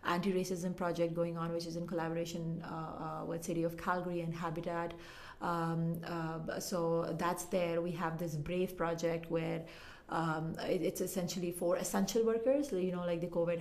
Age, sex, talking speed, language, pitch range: 30-49, female, 165 wpm, English, 165-175 Hz